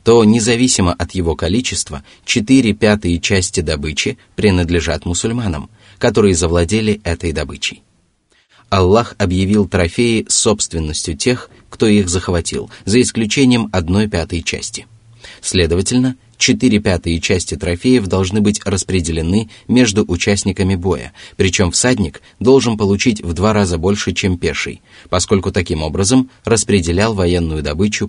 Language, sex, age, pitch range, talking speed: Russian, male, 30-49, 90-110 Hz, 115 wpm